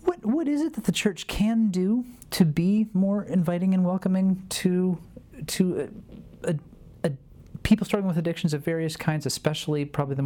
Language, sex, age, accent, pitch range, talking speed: English, male, 30-49, American, 130-170 Hz, 175 wpm